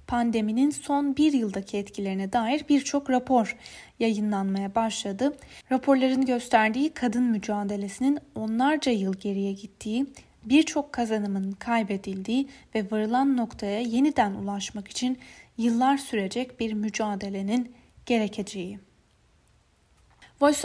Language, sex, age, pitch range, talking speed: Turkish, female, 10-29, 205-255 Hz, 95 wpm